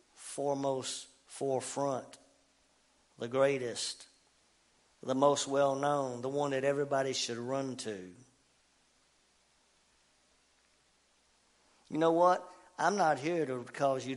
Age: 50-69